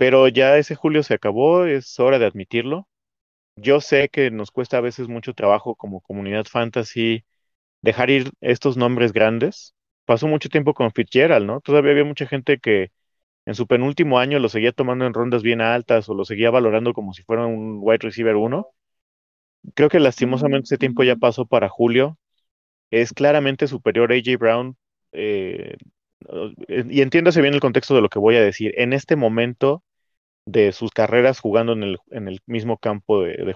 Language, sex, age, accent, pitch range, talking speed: Spanish, male, 30-49, Mexican, 110-130 Hz, 180 wpm